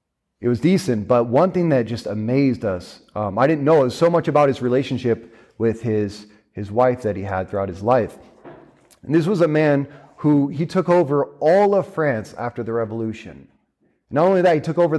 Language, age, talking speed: English, 30-49, 200 wpm